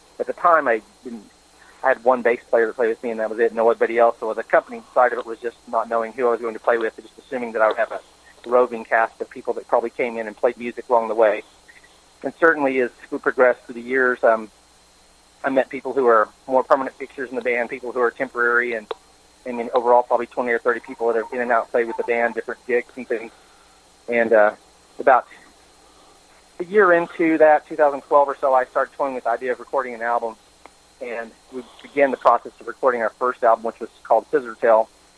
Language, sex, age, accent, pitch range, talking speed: English, male, 40-59, American, 115-130 Hz, 235 wpm